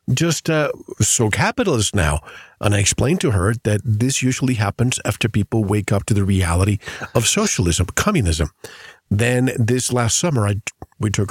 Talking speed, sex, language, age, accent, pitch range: 160 wpm, male, English, 50-69, American, 105-135 Hz